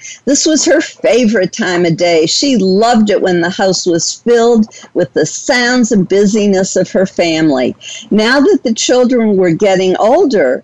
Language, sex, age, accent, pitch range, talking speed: English, female, 50-69, American, 175-225 Hz, 170 wpm